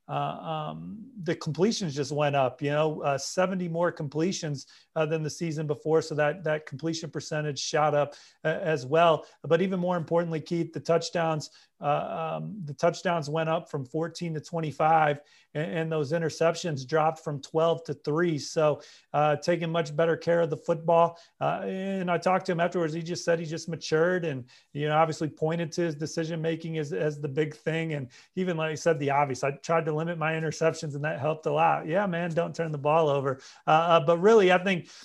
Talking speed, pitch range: 205 wpm, 155-170 Hz